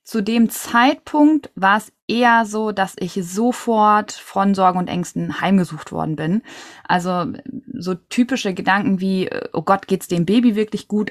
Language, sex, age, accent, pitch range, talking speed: German, female, 20-39, German, 185-240 Hz, 160 wpm